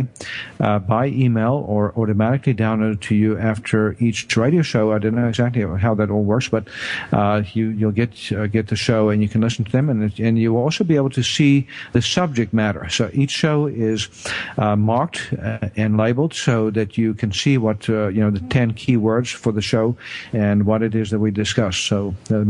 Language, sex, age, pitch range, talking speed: English, male, 50-69, 110-125 Hz, 215 wpm